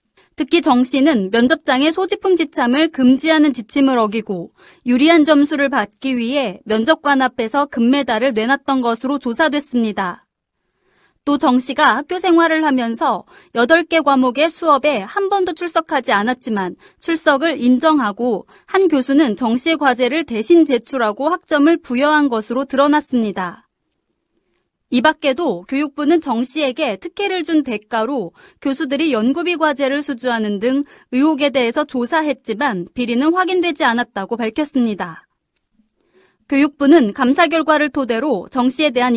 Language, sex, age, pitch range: Korean, female, 30-49, 240-315 Hz